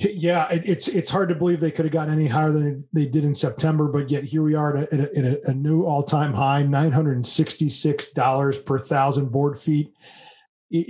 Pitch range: 145-165 Hz